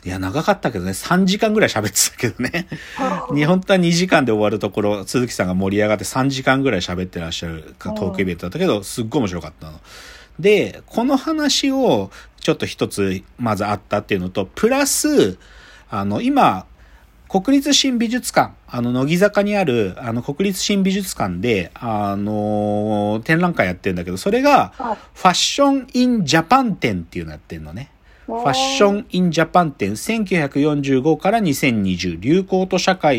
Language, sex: Japanese, male